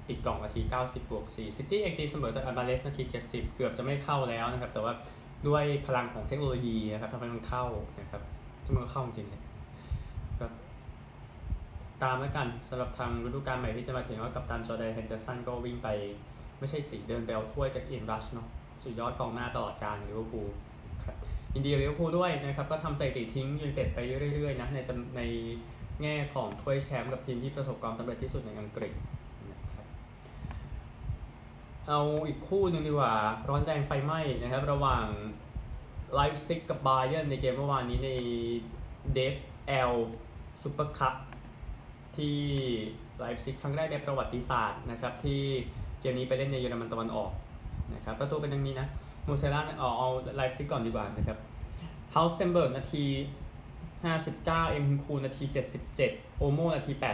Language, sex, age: Thai, male, 20-39